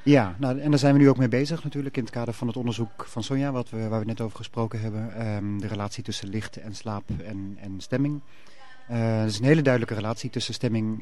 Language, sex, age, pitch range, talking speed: Dutch, male, 40-59, 105-120 Hz, 250 wpm